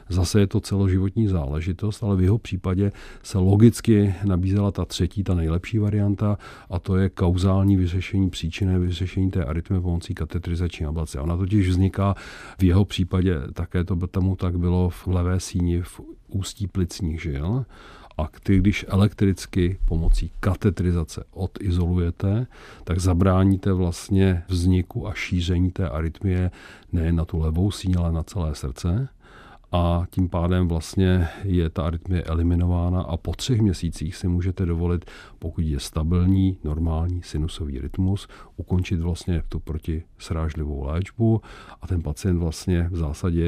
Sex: male